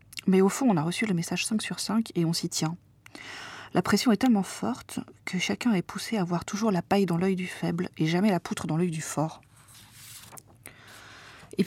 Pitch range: 165-200 Hz